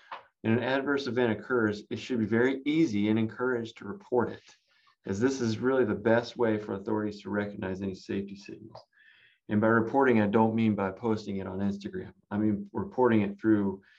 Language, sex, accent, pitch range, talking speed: English, male, American, 100-125 Hz, 195 wpm